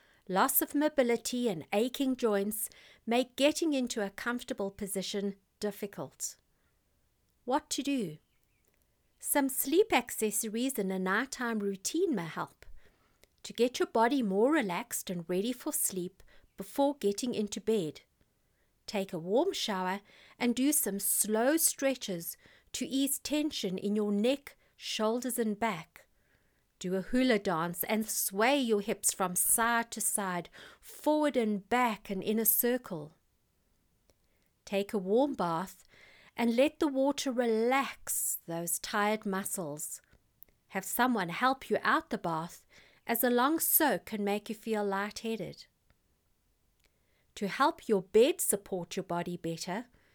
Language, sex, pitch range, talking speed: English, female, 195-260 Hz, 135 wpm